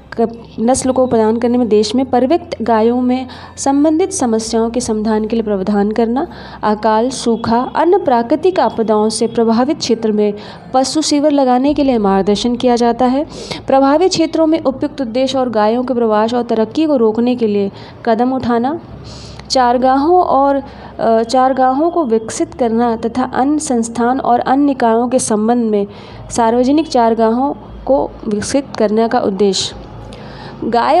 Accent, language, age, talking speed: native, Hindi, 20-39, 145 wpm